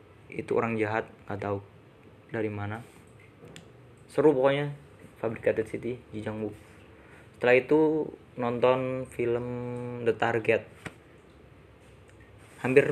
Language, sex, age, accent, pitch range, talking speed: Indonesian, male, 20-39, native, 110-120 Hz, 90 wpm